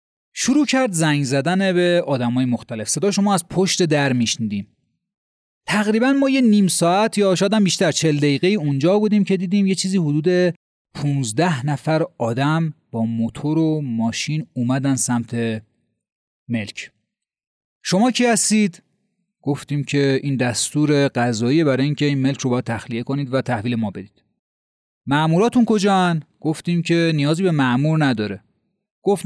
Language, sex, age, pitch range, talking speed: Persian, male, 30-49, 125-175 Hz, 140 wpm